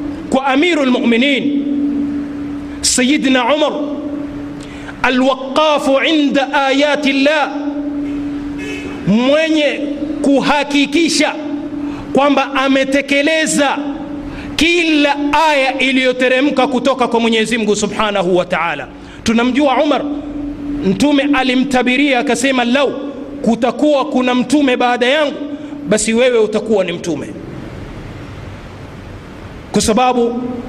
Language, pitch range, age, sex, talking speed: Swahili, 235-290 Hz, 30-49, male, 80 wpm